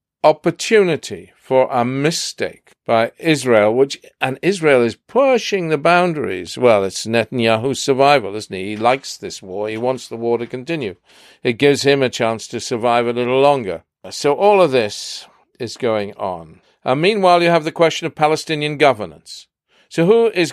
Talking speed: 170 wpm